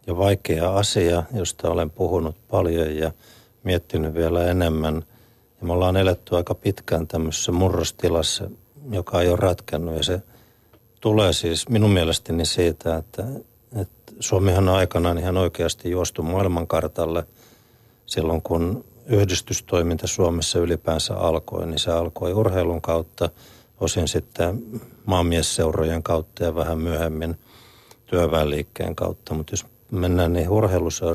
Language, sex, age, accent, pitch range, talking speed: Finnish, male, 50-69, native, 85-110 Hz, 120 wpm